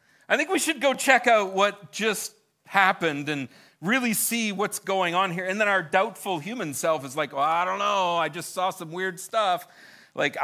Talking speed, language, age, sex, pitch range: 200 wpm, English, 40-59, male, 140-190 Hz